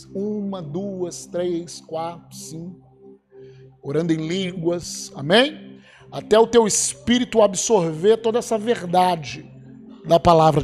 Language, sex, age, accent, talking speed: Portuguese, male, 50-69, Brazilian, 105 wpm